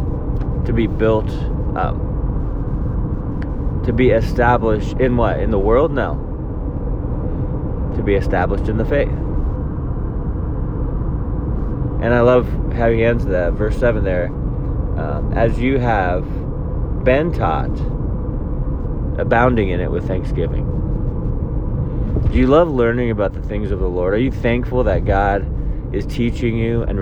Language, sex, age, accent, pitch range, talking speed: English, male, 30-49, American, 95-115 Hz, 130 wpm